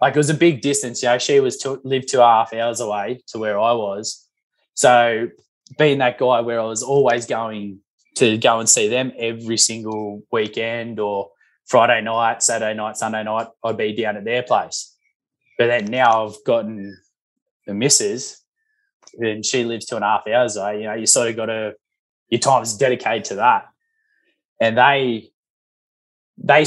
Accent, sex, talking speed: Australian, male, 190 wpm